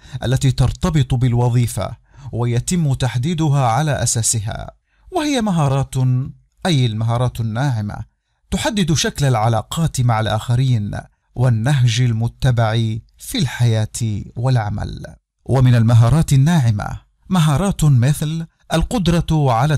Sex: male